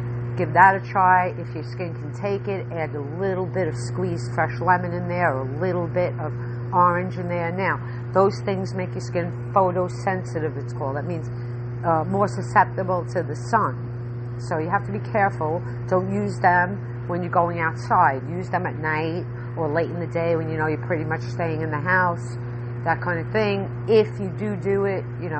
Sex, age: female, 50-69